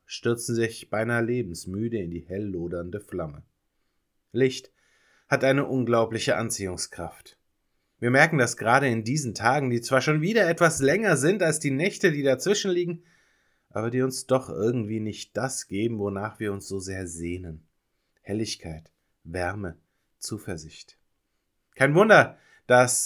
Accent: German